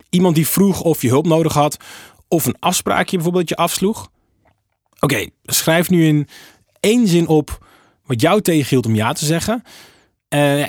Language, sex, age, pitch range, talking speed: Dutch, male, 20-39, 110-160 Hz, 165 wpm